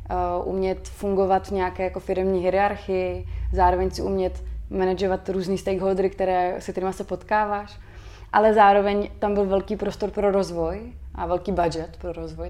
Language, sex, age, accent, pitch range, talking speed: Czech, female, 20-39, native, 180-195 Hz, 145 wpm